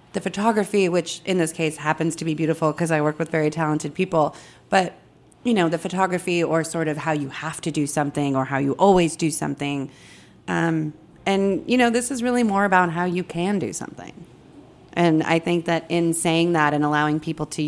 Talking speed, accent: 210 wpm, American